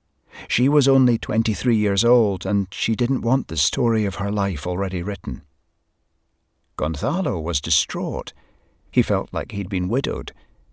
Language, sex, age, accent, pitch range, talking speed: English, male, 60-79, British, 85-115 Hz, 145 wpm